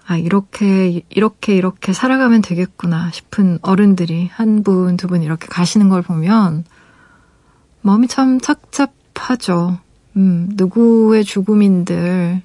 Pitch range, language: 175-215 Hz, Korean